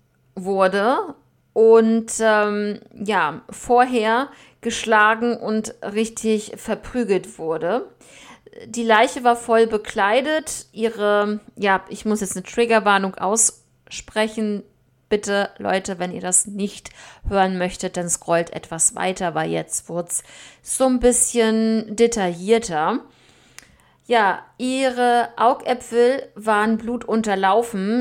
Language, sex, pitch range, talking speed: German, female, 190-230 Hz, 105 wpm